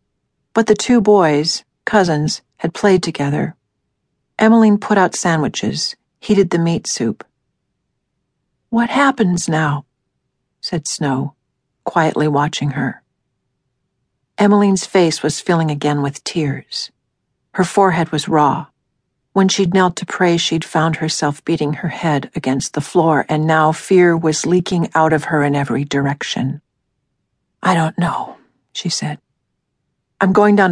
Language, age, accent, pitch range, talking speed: English, 50-69, American, 145-180 Hz, 135 wpm